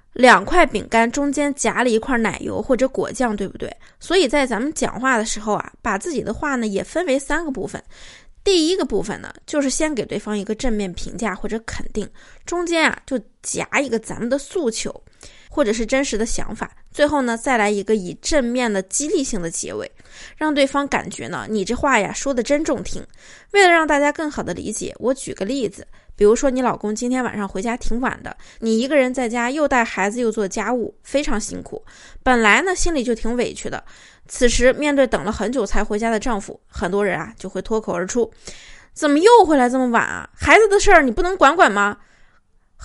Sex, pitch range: female, 215-290 Hz